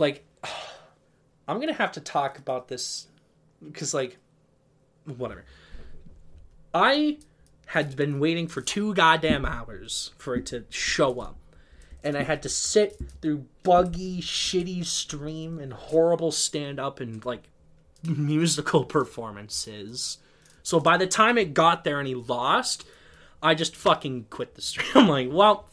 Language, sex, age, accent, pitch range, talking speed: English, male, 20-39, American, 125-170 Hz, 140 wpm